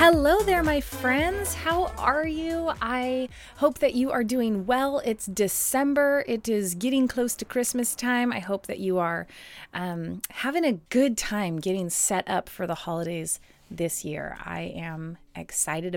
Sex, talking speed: female, 165 wpm